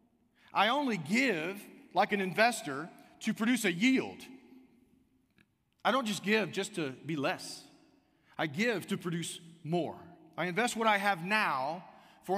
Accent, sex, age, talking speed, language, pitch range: American, male, 40-59, 145 wpm, English, 150-205 Hz